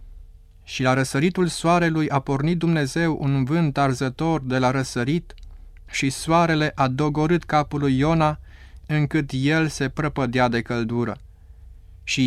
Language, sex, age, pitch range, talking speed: Romanian, male, 30-49, 110-155 Hz, 130 wpm